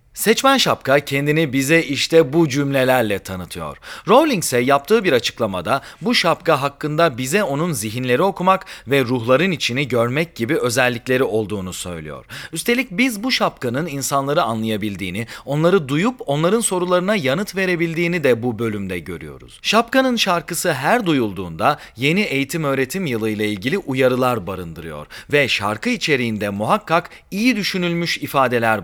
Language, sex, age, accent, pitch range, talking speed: Turkish, male, 40-59, native, 115-180 Hz, 130 wpm